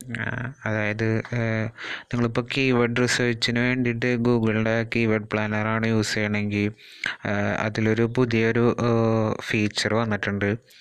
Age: 20-39